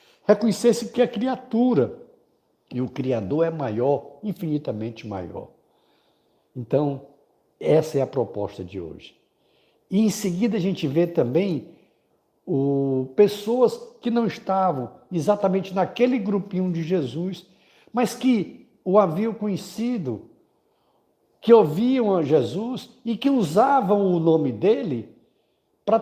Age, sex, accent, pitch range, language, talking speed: 60-79, male, Brazilian, 130-215 Hz, Portuguese, 120 wpm